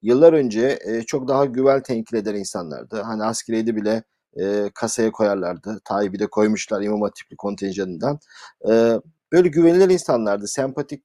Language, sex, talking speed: Turkish, male, 120 wpm